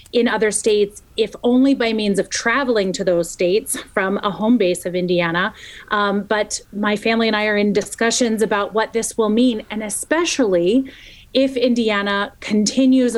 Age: 30-49